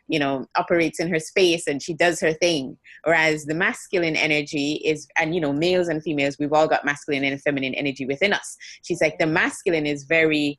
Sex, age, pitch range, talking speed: female, 20-39, 150-180 Hz, 210 wpm